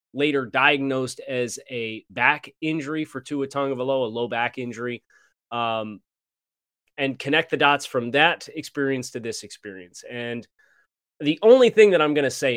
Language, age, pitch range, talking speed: English, 30-49, 125-165 Hz, 165 wpm